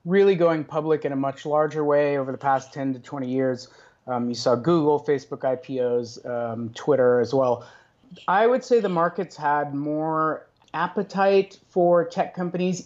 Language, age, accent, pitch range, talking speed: English, 30-49, American, 135-170 Hz, 170 wpm